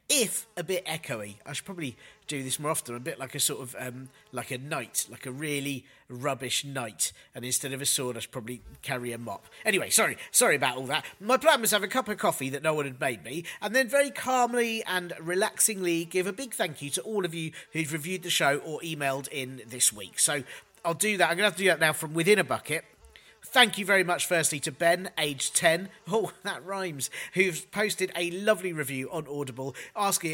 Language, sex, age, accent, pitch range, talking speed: English, male, 40-59, British, 140-205 Hz, 235 wpm